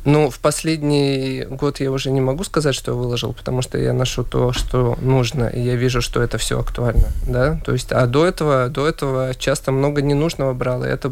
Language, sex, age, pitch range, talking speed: Russian, male, 20-39, 125-145 Hz, 215 wpm